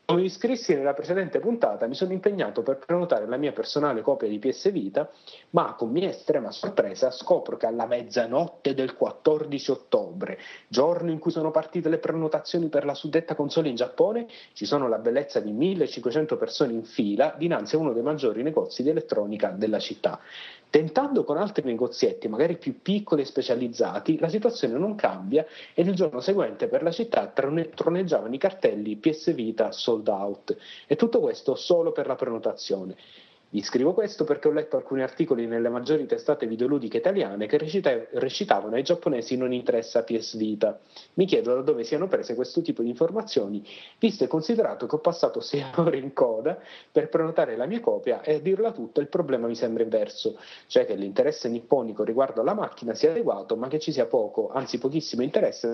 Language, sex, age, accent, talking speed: Italian, male, 30-49, native, 180 wpm